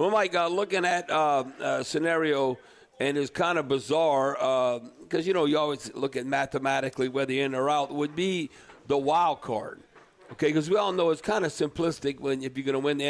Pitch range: 140-165 Hz